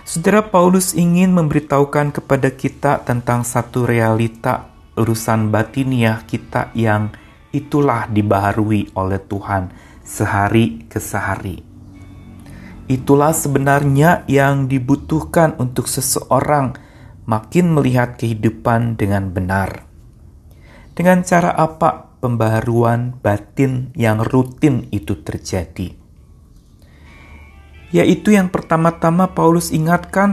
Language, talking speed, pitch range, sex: Indonesian, 90 wpm, 110-170 Hz, male